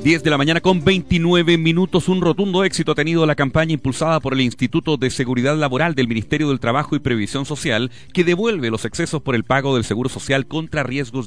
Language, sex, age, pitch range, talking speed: Spanish, male, 40-59, 115-160 Hz, 215 wpm